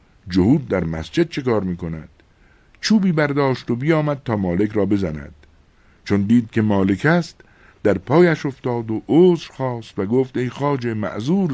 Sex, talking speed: male, 155 wpm